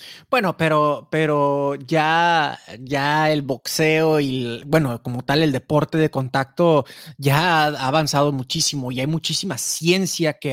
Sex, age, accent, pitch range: male, 30-49, Mexican, 140-175 Hz